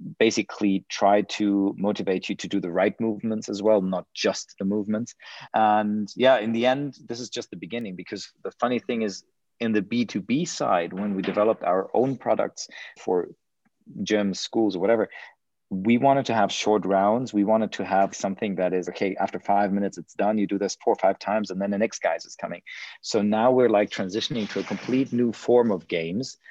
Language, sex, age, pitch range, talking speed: English, male, 30-49, 95-120 Hz, 205 wpm